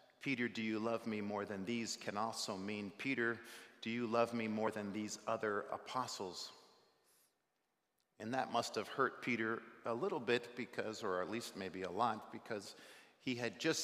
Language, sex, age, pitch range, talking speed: English, male, 50-69, 100-125 Hz, 180 wpm